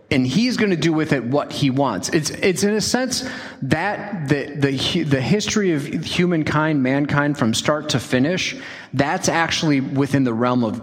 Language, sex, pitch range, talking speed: English, male, 130-175 Hz, 185 wpm